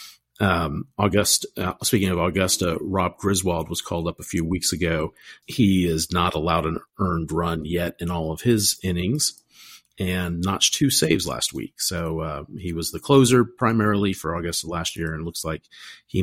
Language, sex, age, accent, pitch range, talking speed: English, male, 40-59, American, 85-110 Hz, 180 wpm